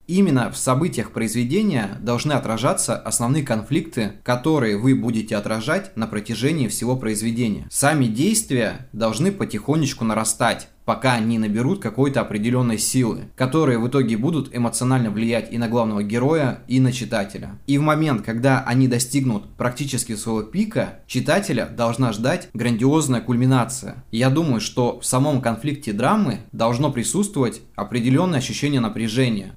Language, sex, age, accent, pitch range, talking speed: Russian, male, 20-39, native, 115-145 Hz, 135 wpm